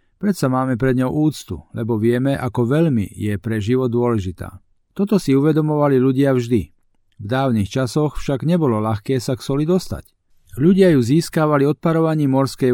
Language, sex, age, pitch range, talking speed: Slovak, male, 40-59, 115-150 Hz, 155 wpm